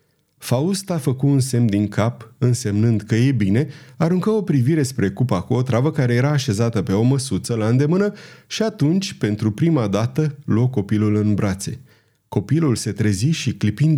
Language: Romanian